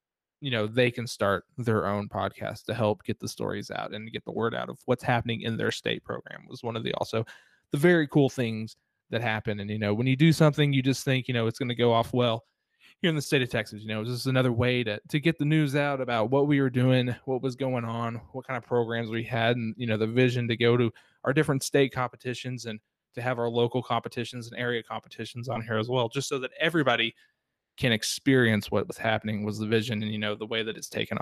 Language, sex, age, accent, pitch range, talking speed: English, male, 20-39, American, 110-135 Hz, 260 wpm